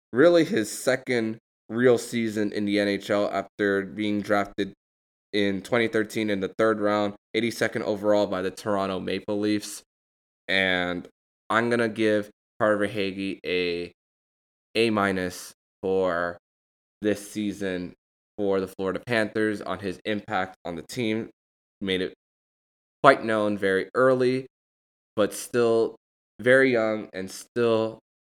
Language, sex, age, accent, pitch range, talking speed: English, male, 20-39, American, 95-110 Hz, 125 wpm